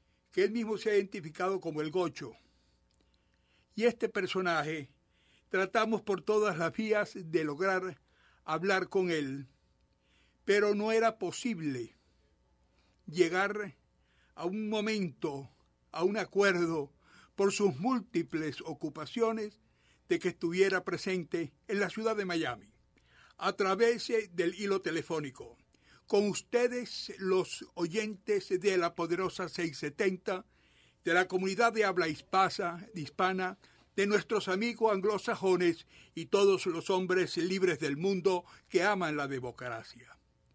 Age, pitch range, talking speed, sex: 60-79, 165-205 Hz, 120 wpm, male